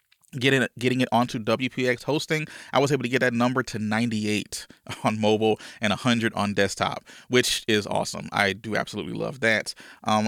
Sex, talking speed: male, 170 wpm